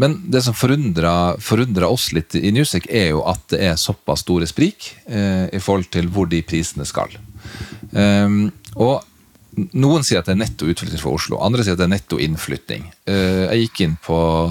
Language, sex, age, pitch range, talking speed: English, male, 30-49, 90-110 Hz, 200 wpm